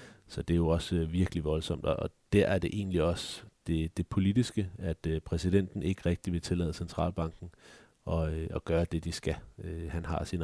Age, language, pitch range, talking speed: 30-49, Danish, 80-95 Hz, 205 wpm